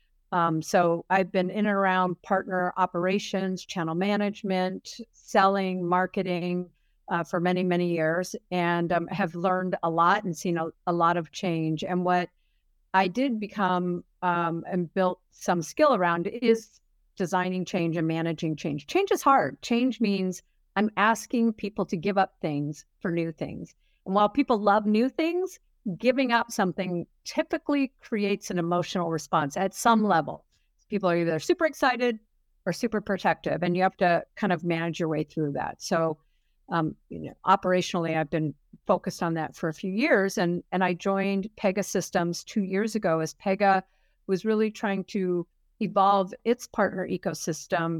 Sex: female